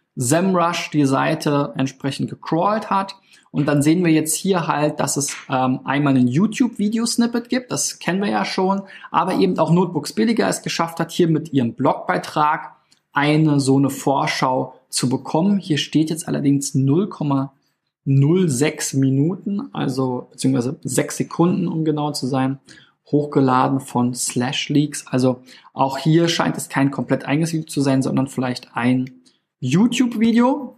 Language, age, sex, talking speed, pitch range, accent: German, 20-39, male, 145 wpm, 135-170 Hz, German